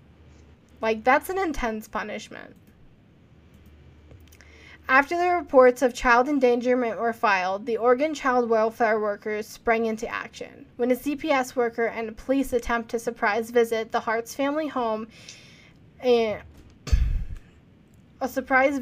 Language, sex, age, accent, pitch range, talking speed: English, female, 10-29, American, 225-270 Hz, 125 wpm